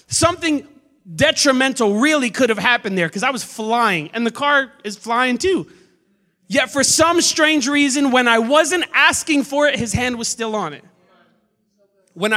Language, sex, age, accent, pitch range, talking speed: English, male, 30-49, American, 195-280 Hz, 170 wpm